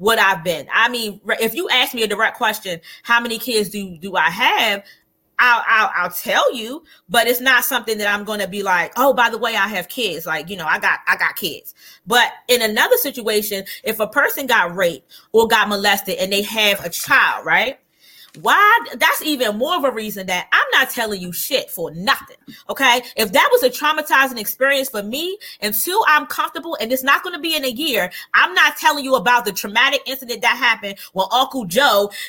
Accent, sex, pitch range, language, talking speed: American, female, 220-290 Hz, English, 220 wpm